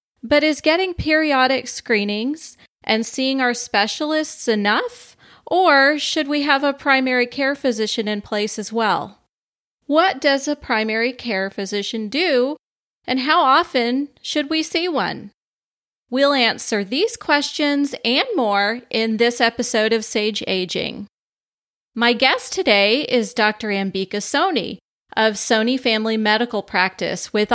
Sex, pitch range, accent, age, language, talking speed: female, 215-275 Hz, American, 30-49, English, 135 wpm